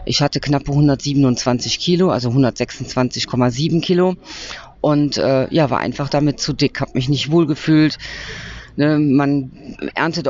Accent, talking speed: German, 140 wpm